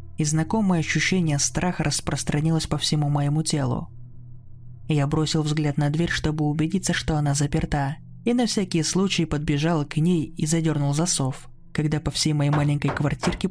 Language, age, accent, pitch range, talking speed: Russian, 20-39, native, 140-165 Hz, 155 wpm